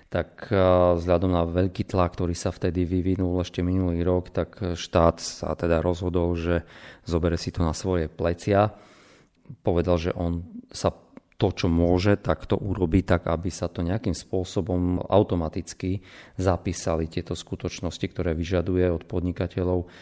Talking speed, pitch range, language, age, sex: 145 wpm, 85-95 Hz, Slovak, 40-59, male